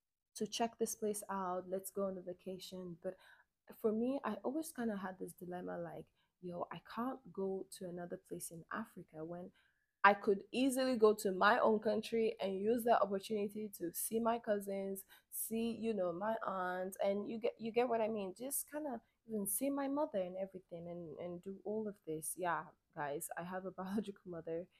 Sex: female